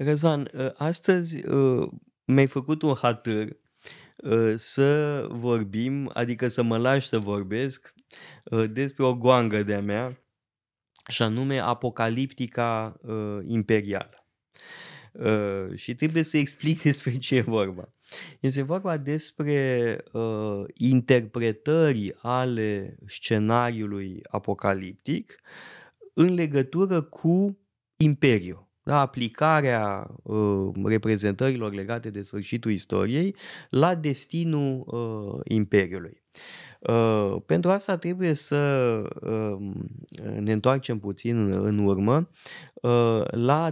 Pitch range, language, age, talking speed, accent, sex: 110-145 Hz, Romanian, 20-39, 85 wpm, native, male